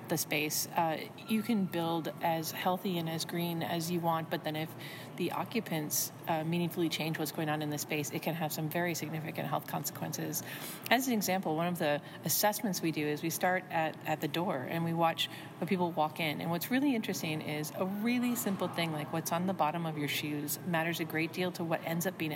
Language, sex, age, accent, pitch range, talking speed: English, female, 40-59, American, 155-175 Hz, 230 wpm